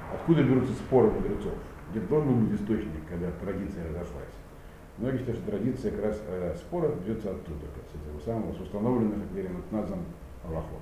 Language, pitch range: Russian, 85-120 Hz